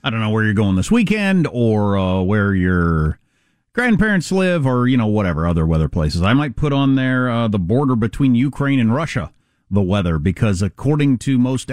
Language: English